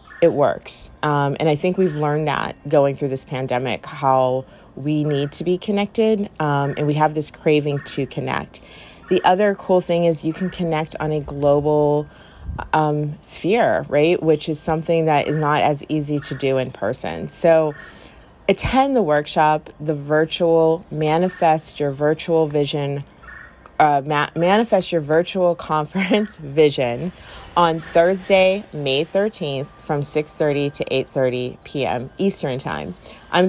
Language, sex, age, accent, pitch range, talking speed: English, female, 30-49, American, 145-180 Hz, 145 wpm